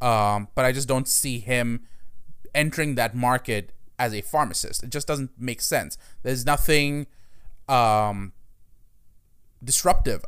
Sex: male